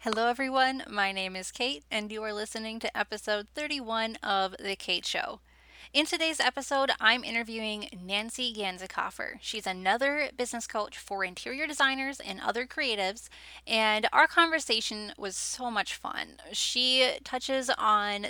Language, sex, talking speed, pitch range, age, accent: English, female, 145 wpm, 205-260 Hz, 10-29, American